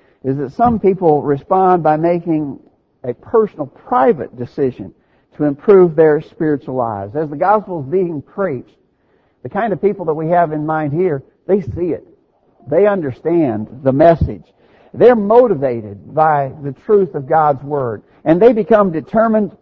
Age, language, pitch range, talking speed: 60-79, English, 140-195 Hz, 155 wpm